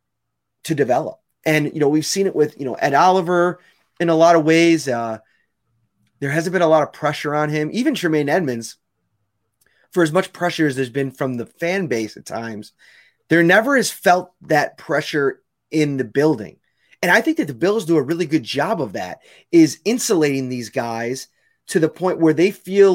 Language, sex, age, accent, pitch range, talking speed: English, male, 30-49, American, 140-175 Hz, 200 wpm